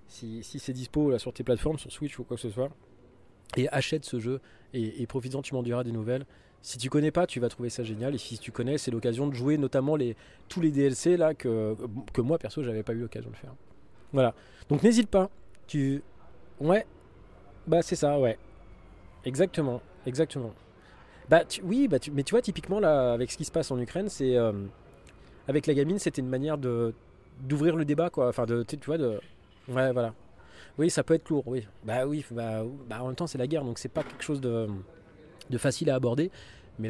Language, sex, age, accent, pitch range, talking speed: French, male, 20-39, French, 115-150 Hz, 220 wpm